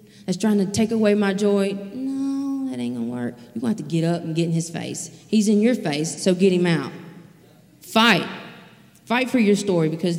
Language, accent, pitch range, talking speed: English, American, 155-195 Hz, 230 wpm